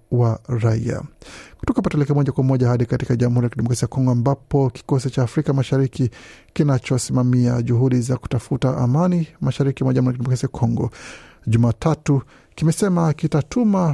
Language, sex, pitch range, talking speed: Swahili, male, 120-145 Hz, 140 wpm